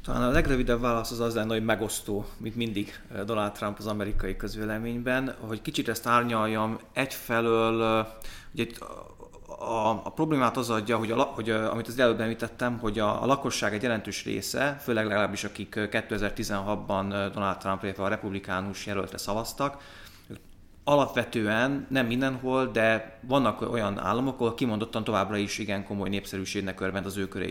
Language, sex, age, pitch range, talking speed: Hungarian, male, 30-49, 100-115 Hz, 155 wpm